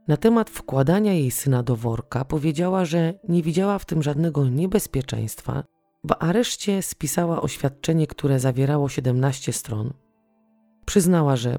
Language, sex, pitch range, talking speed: Polish, female, 125-170 Hz, 130 wpm